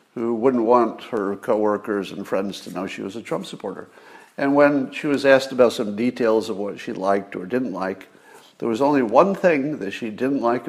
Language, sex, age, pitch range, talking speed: English, male, 60-79, 110-150 Hz, 215 wpm